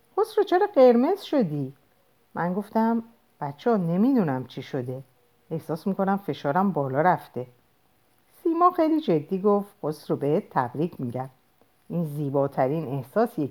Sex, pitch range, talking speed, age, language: female, 140-225 Hz, 120 wpm, 50-69, Persian